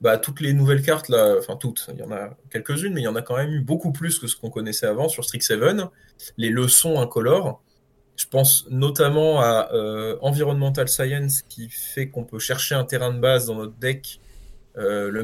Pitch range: 115-140 Hz